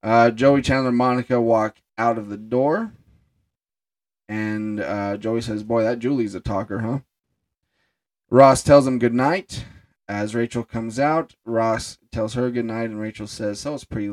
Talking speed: 165 wpm